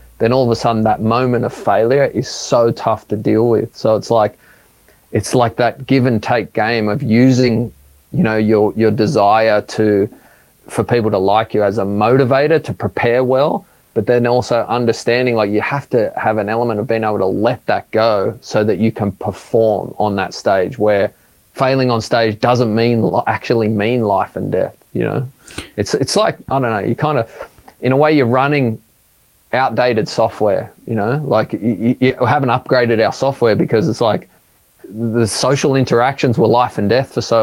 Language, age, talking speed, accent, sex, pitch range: English, 30-49, 195 wpm, Australian, male, 110-125 Hz